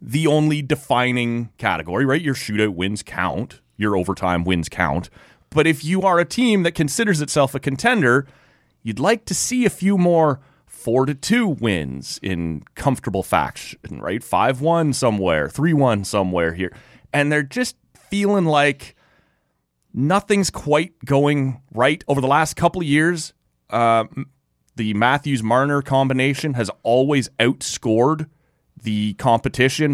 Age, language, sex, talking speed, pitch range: 30-49, English, male, 135 wpm, 105-145 Hz